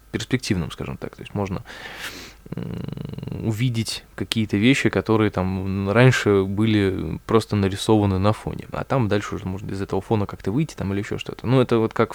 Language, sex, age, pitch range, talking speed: Russian, male, 20-39, 100-125 Hz, 175 wpm